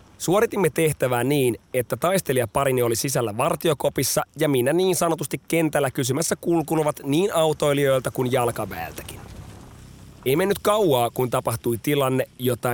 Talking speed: 125 wpm